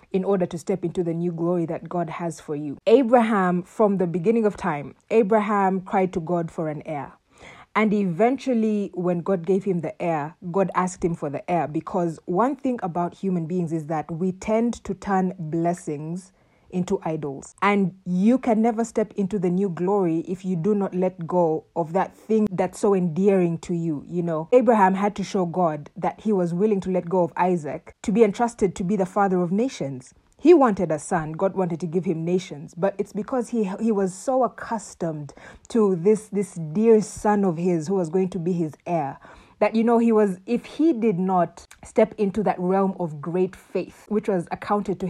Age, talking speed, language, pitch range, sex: 30-49, 205 wpm, English, 175-205 Hz, female